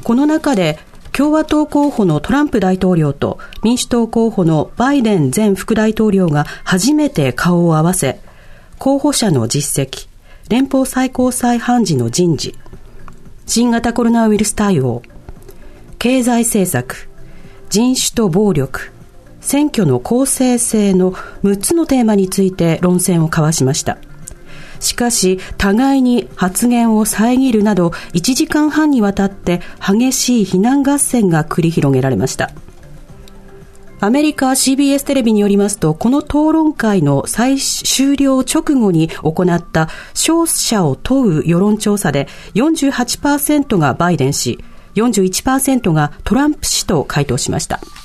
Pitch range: 175-260 Hz